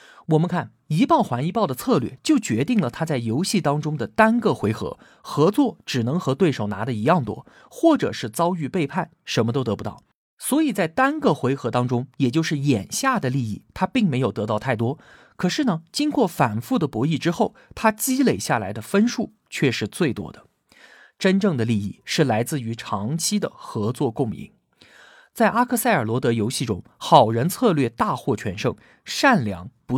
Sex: male